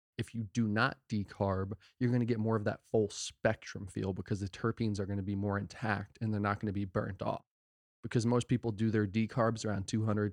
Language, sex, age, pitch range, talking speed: English, male, 20-39, 100-115 Hz, 230 wpm